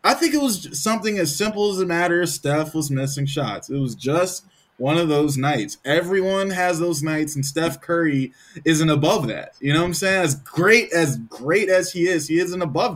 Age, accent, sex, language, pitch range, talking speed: 20-39, American, male, English, 140-190 Hz, 210 wpm